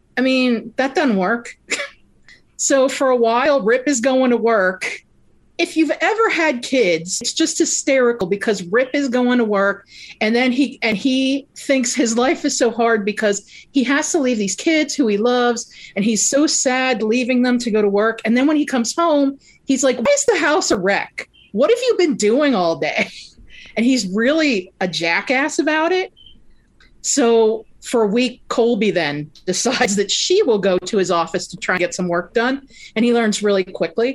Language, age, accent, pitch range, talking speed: English, 40-59, American, 195-265 Hz, 200 wpm